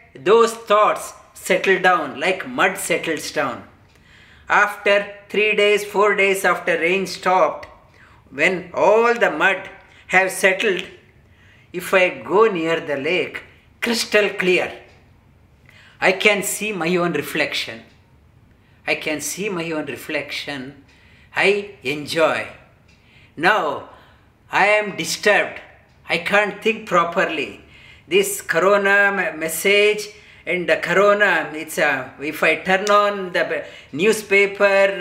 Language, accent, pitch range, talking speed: English, Indian, 175-220 Hz, 115 wpm